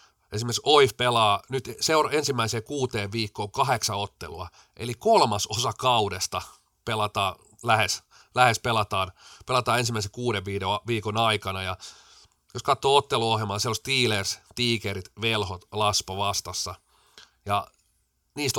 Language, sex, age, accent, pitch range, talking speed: Finnish, male, 30-49, native, 100-120 Hz, 115 wpm